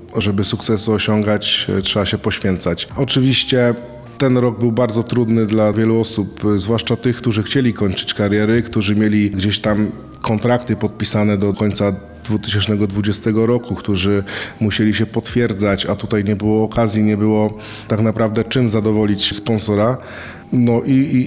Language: Polish